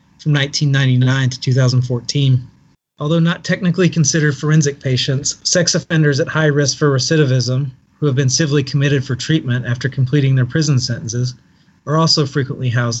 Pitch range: 130-150 Hz